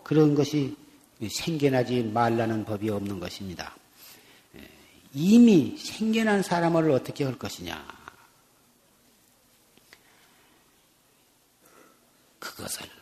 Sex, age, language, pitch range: male, 40-59, Korean, 130-175 Hz